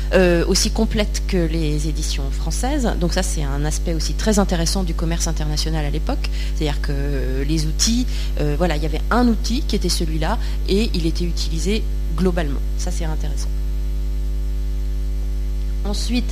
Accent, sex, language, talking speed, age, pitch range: French, female, French, 160 wpm, 30-49, 150-185 Hz